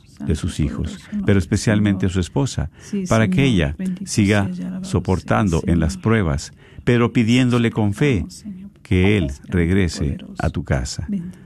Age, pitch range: 50-69, 90-125 Hz